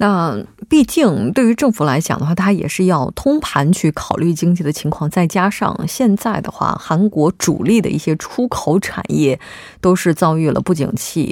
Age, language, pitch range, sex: 20-39, Korean, 155-200 Hz, female